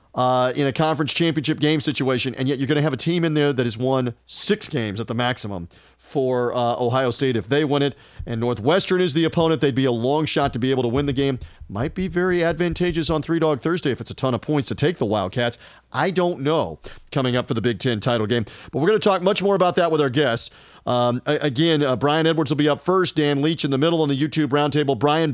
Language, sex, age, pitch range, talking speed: English, male, 40-59, 125-170 Hz, 260 wpm